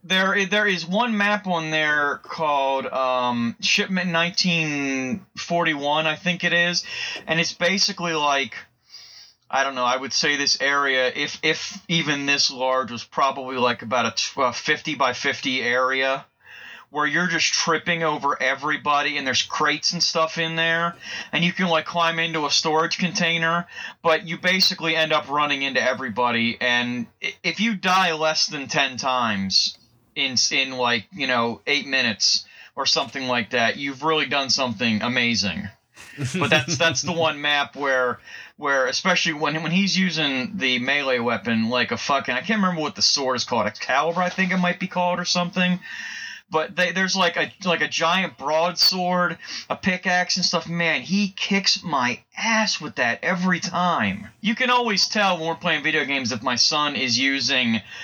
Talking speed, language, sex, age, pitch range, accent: 175 wpm, English, male, 30-49, 135-180 Hz, American